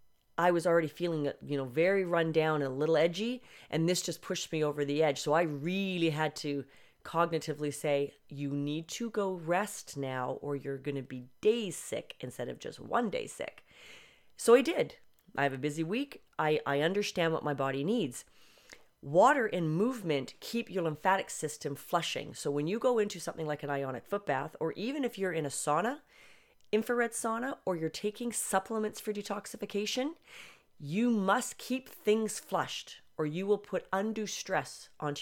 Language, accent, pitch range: English, American, 145-210 Hz